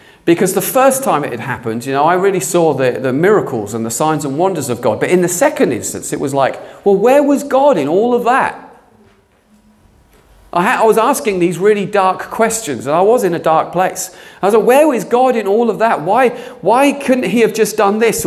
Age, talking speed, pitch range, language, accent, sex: 40-59, 235 wpm, 160-240 Hz, English, British, male